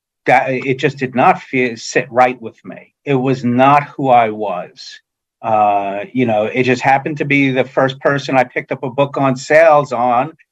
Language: English